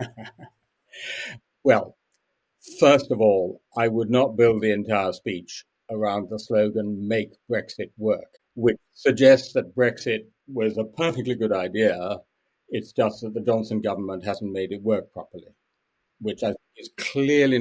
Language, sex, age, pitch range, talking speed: English, male, 60-79, 95-125 Hz, 135 wpm